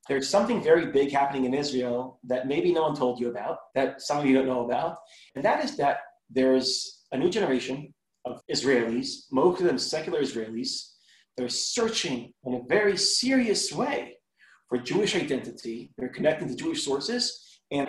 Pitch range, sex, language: 130-190 Hz, male, English